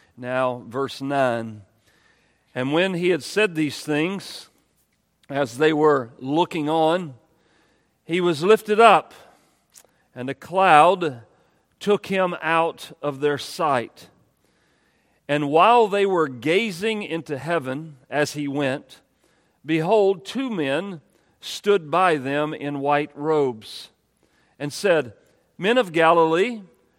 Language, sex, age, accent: English, male, 40-59, American